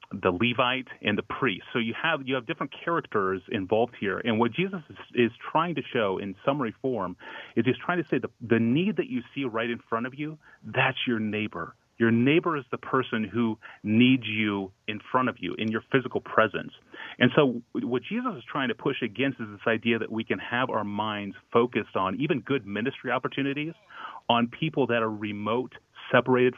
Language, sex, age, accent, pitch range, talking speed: English, male, 30-49, American, 105-130 Hz, 205 wpm